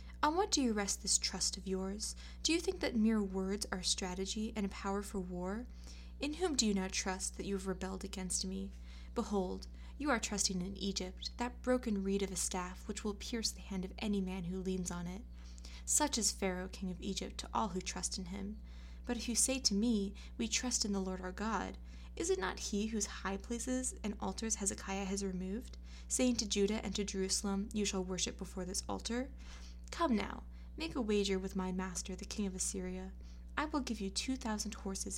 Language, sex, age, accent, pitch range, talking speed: English, female, 20-39, American, 185-225 Hz, 215 wpm